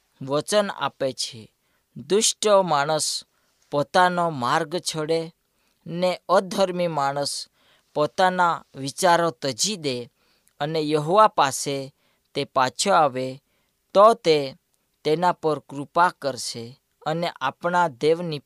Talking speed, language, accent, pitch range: 70 wpm, Gujarati, native, 140-185 Hz